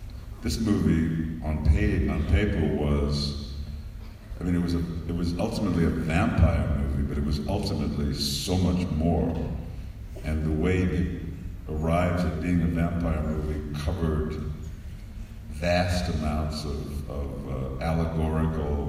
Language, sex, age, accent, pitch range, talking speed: English, male, 50-69, American, 75-95 Hz, 125 wpm